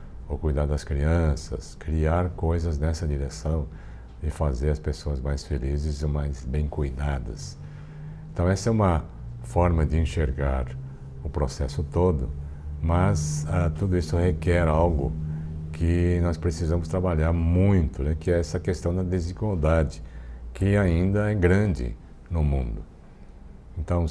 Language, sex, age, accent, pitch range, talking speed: Portuguese, male, 60-79, Brazilian, 75-85 Hz, 130 wpm